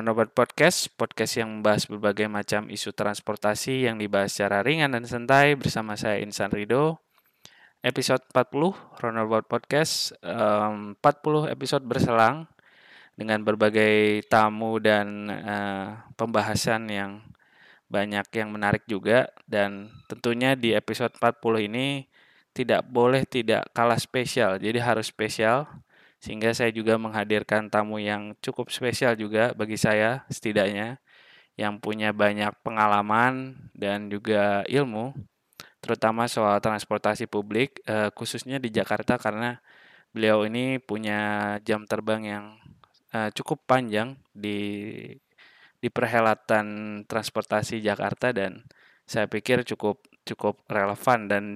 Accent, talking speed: native, 115 wpm